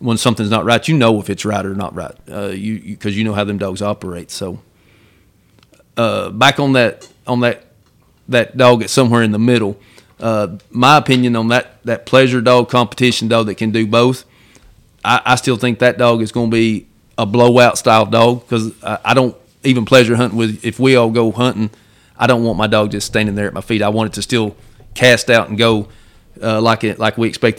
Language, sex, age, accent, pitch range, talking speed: English, male, 40-59, American, 105-120 Hz, 225 wpm